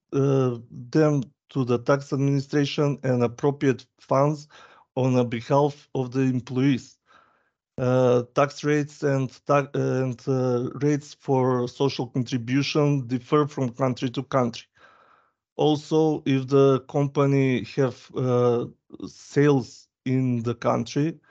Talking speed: 115 wpm